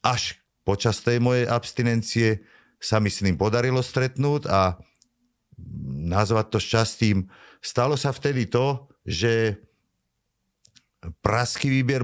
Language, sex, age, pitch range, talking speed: Slovak, male, 50-69, 100-125 Hz, 110 wpm